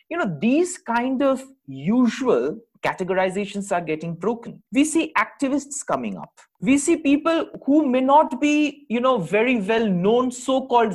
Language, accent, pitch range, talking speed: English, Indian, 185-275 Hz, 155 wpm